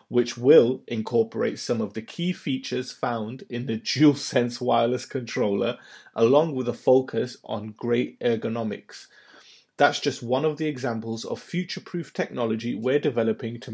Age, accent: 30-49, British